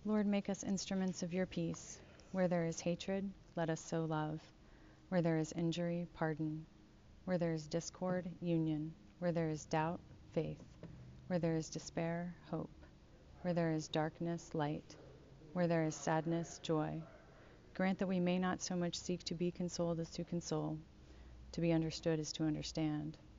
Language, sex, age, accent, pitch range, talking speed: English, female, 40-59, American, 155-180 Hz, 165 wpm